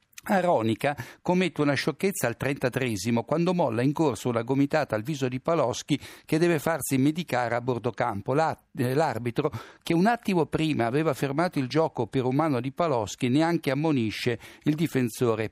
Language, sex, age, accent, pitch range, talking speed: Italian, male, 60-79, native, 125-160 Hz, 160 wpm